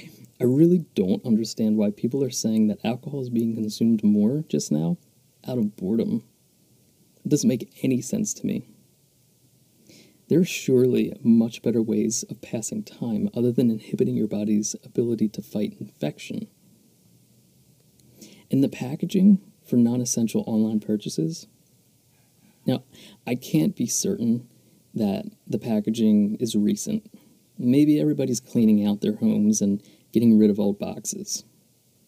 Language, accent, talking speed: English, American, 135 wpm